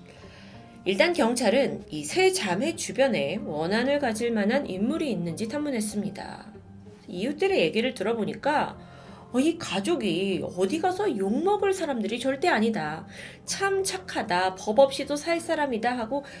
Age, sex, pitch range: 30-49, female, 195-290 Hz